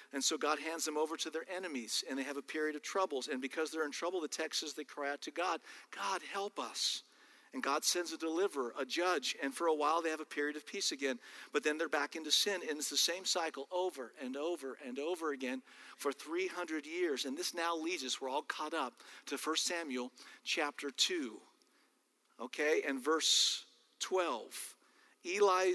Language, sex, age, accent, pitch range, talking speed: English, male, 50-69, American, 150-250 Hz, 205 wpm